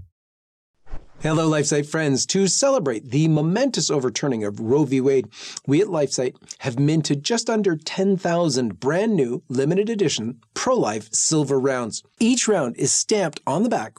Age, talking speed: 40-59, 145 wpm